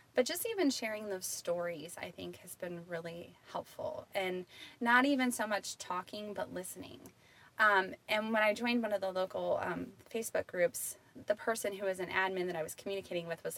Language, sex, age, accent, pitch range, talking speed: English, female, 20-39, American, 175-230 Hz, 195 wpm